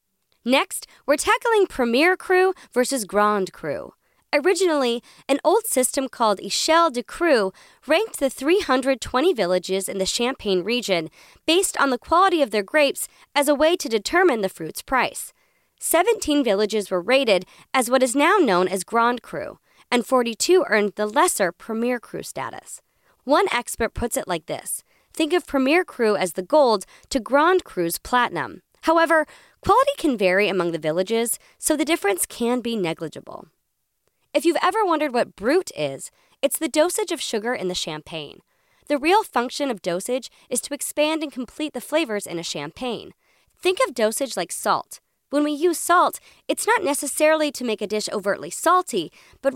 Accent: American